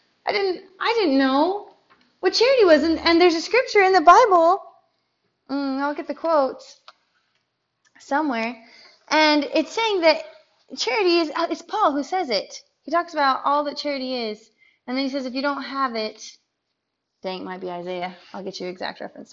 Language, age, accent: English, 20-39, American